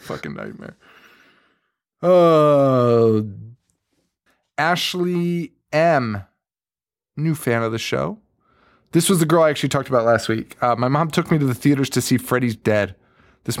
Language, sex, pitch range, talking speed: English, male, 115-150 Hz, 145 wpm